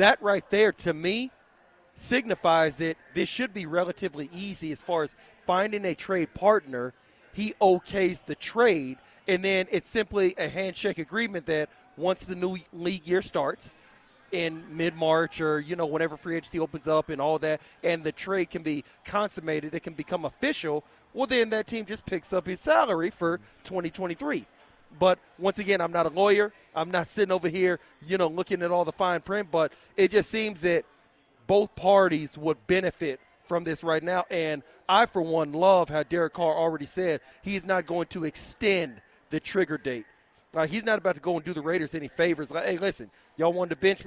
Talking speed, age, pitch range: 190 wpm, 30-49, 160-190 Hz